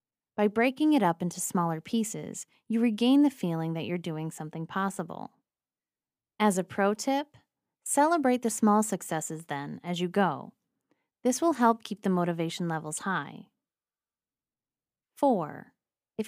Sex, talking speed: female, 140 wpm